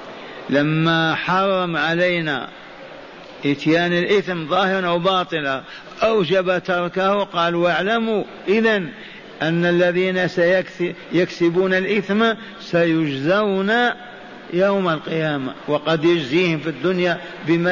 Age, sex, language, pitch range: 50-69, male, Arabic, 150-180 Hz